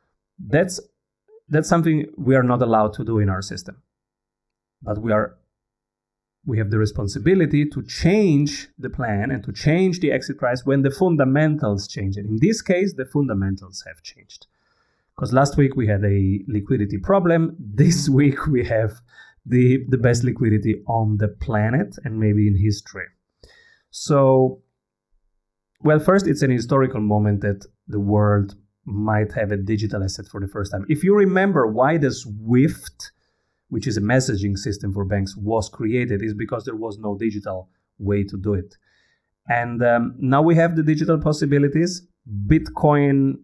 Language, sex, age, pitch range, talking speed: English, male, 30-49, 105-140 Hz, 160 wpm